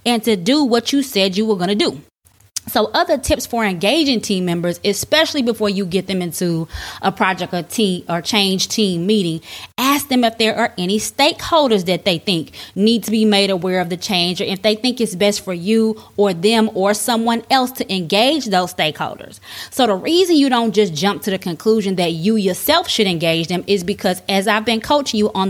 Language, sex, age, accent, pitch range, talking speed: English, female, 20-39, American, 190-245 Hz, 215 wpm